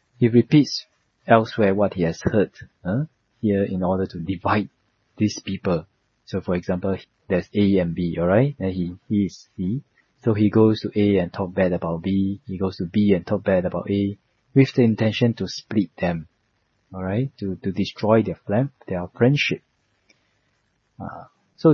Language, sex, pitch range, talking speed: English, male, 95-110 Hz, 170 wpm